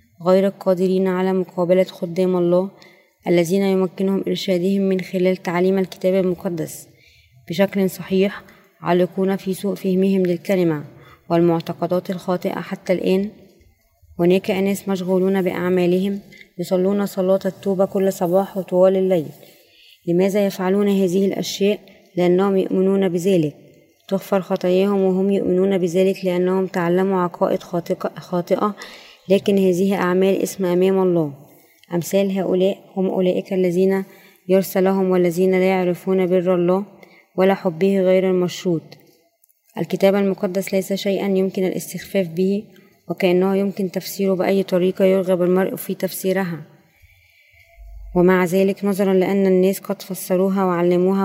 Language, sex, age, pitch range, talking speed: Arabic, female, 20-39, 180-195 Hz, 115 wpm